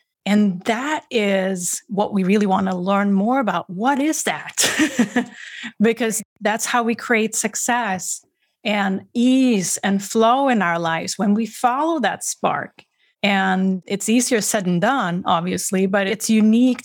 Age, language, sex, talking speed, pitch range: 30-49, English, female, 150 wpm, 190-235 Hz